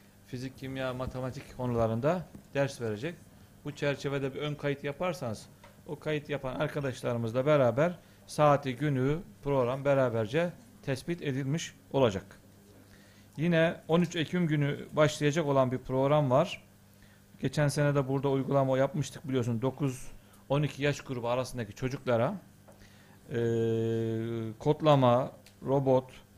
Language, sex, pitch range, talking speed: Turkish, male, 115-150 Hz, 110 wpm